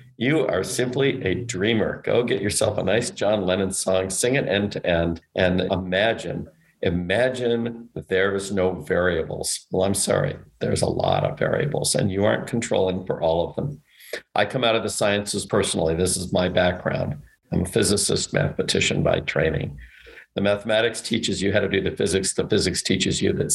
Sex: male